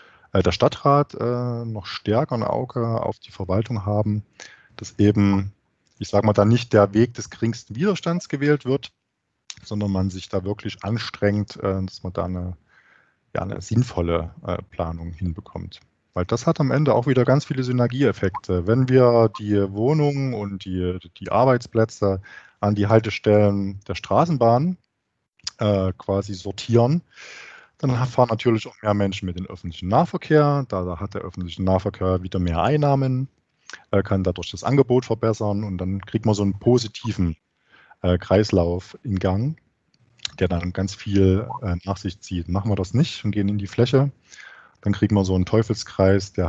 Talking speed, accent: 160 wpm, German